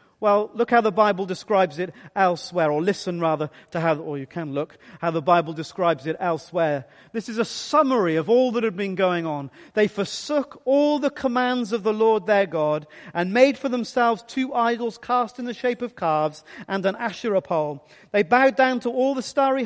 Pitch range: 180-245 Hz